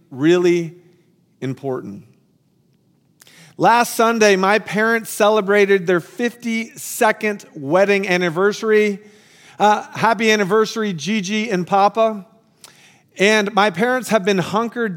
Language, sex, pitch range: English, male, 180-215 Hz